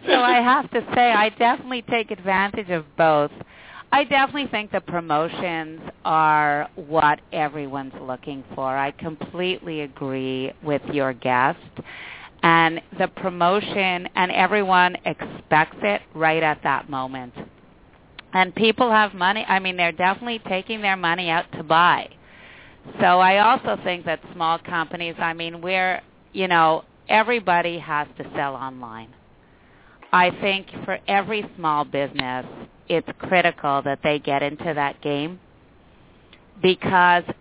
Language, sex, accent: English, female, American